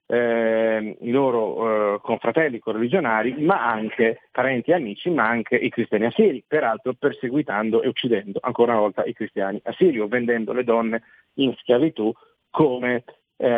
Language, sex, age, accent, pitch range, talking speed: Italian, male, 40-59, native, 115-140 Hz, 150 wpm